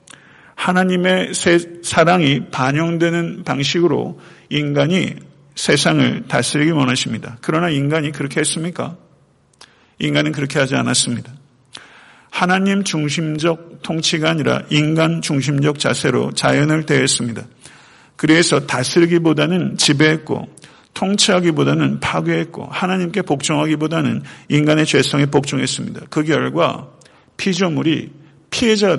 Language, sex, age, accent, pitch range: Korean, male, 50-69, native, 140-175 Hz